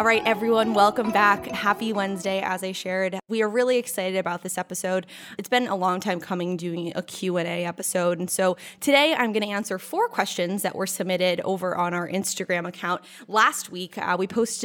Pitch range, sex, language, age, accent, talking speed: 180-235 Hz, female, English, 20-39, American, 200 wpm